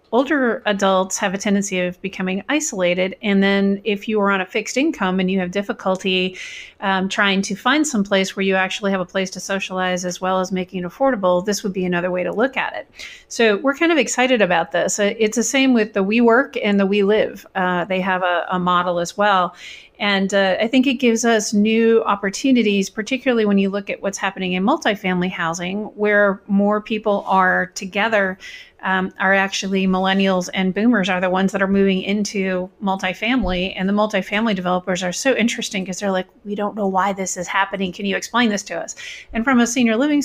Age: 40-59